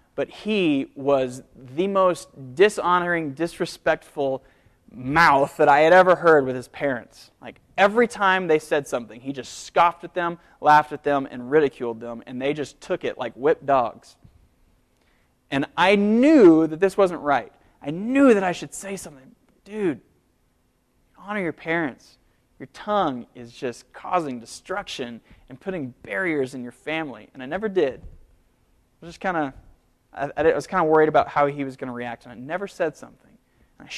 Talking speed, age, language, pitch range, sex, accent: 170 wpm, 20-39, English, 125-180 Hz, male, American